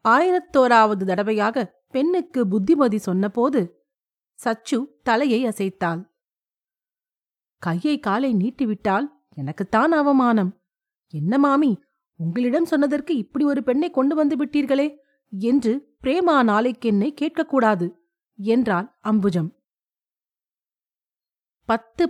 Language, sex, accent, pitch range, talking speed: Tamil, female, native, 200-280 Hz, 80 wpm